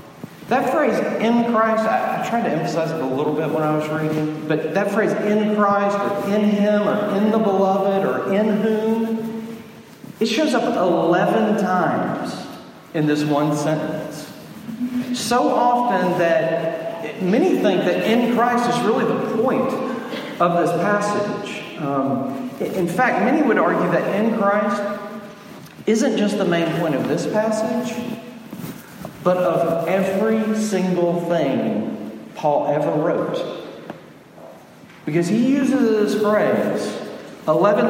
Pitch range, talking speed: 170-225 Hz, 135 wpm